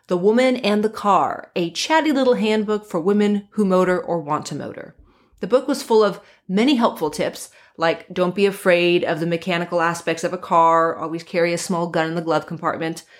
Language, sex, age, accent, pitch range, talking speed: English, female, 30-49, American, 165-205 Hz, 205 wpm